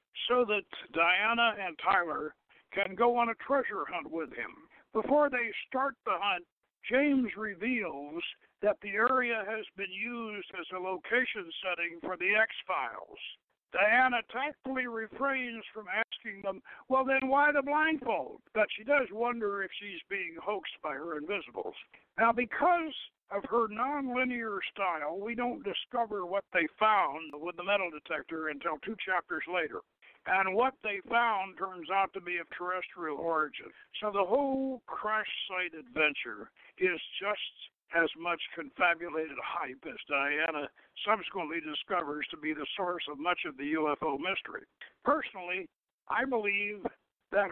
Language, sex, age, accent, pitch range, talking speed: English, male, 60-79, American, 185-250 Hz, 145 wpm